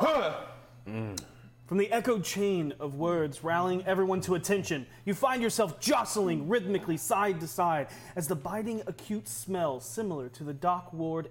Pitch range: 125-180 Hz